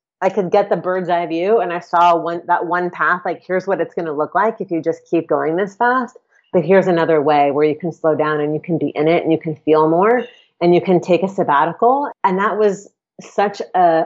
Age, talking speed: 30-49, 255 wpm